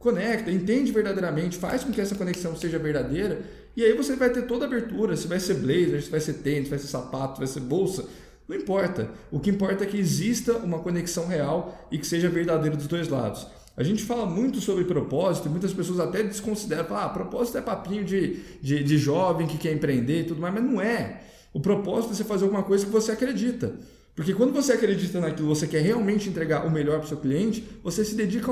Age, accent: 20-39, Brazilian